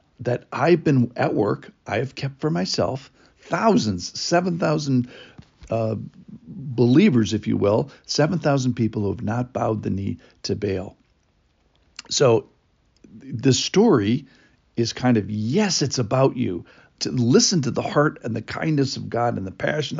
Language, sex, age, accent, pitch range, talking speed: English, male, 50-69, American, 110-145 Hz, 145 wpm